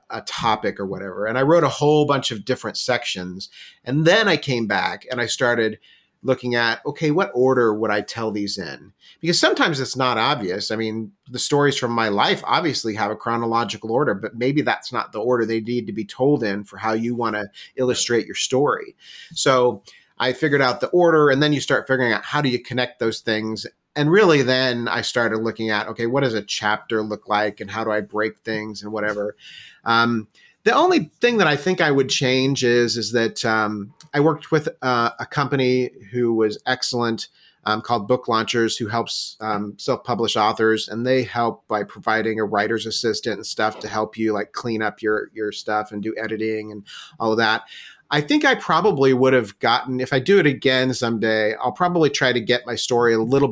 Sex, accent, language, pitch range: male, American, English, 110-130 Hz